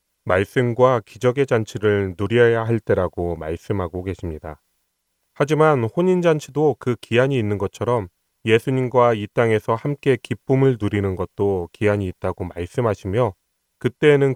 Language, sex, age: Korean, male, 30-49